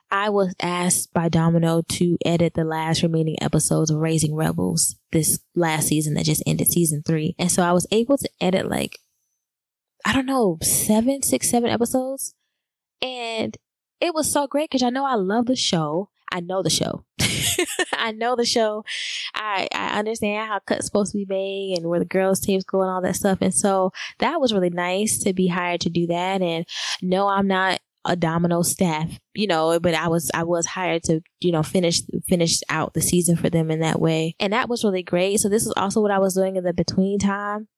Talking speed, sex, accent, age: 210 wpm, female, American, 10-29